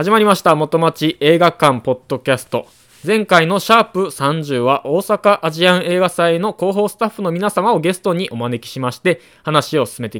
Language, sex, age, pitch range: Japanese, male, 20-39, 130-175 Hz